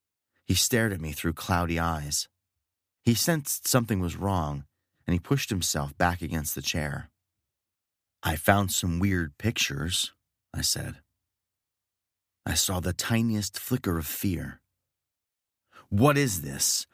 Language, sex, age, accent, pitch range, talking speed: English, male, 30-49, American, 85-105 Hz, 130 wpm